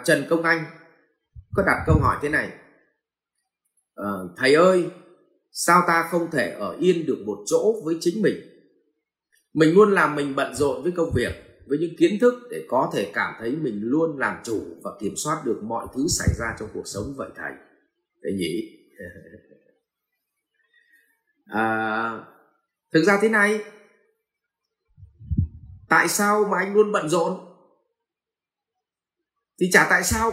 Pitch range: 155-220 Hz